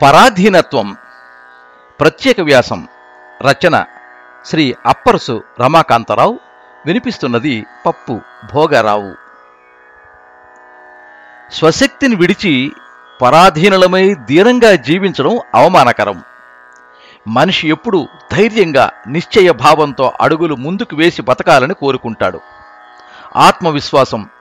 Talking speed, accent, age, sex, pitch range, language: 65 wpm, native, 50-69, male, 115-180 Hz, Telugu